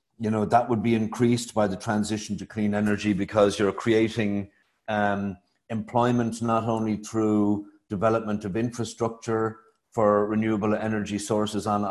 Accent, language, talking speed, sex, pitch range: Irish, English, 140 wpm, male, 100-110 Hz